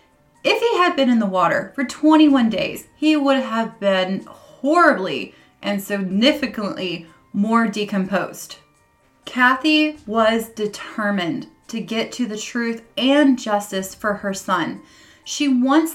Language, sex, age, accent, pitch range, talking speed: English, female, 20-39, American, 205-280 Hz, 130 wpm